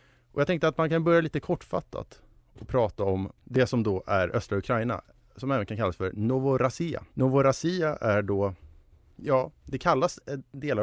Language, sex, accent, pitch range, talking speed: Swedish, male, Norwegian, 105-140 Hz, 170 wpm